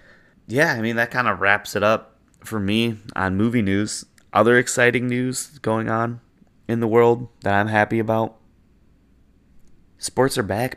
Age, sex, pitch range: 20-39, male, 90-115 Hz